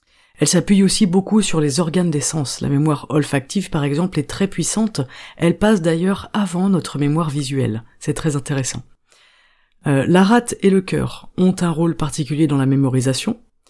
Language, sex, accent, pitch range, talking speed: French, female, French, 145-185 Hz, 175 wpm